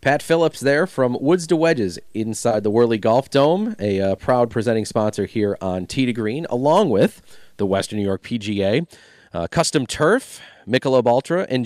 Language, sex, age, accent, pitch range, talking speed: English, male, 30-49, American, 105-140 Hz, 180 wpm